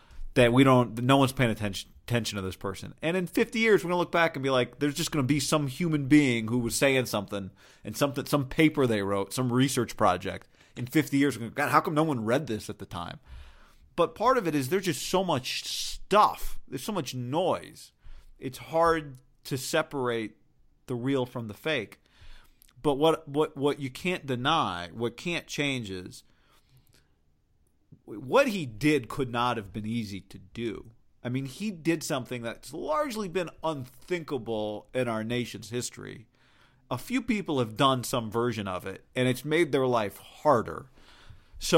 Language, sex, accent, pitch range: English, male, American, 110-145 Hz